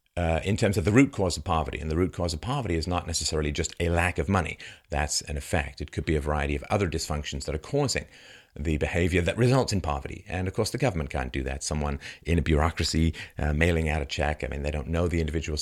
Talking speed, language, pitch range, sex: 255 wpm, English, 75-95 Hz, male